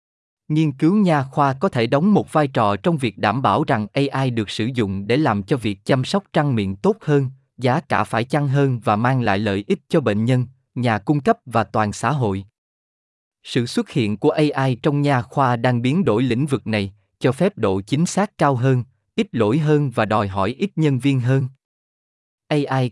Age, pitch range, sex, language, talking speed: 20-39, 110-150 Hz, male, Vietnamese, 210 wpm